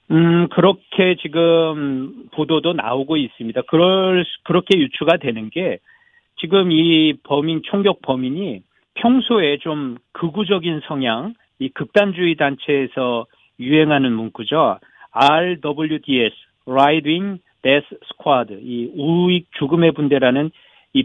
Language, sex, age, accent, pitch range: Korean, male, 40-59, native, 130-175 Hz